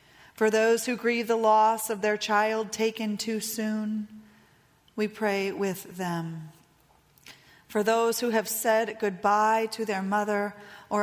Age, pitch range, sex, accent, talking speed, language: 40-59, 195-225 Hz, female, American, 140 wpm, English